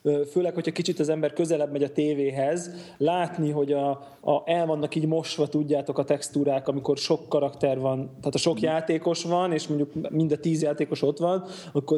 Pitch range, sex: 135-155 Hz, male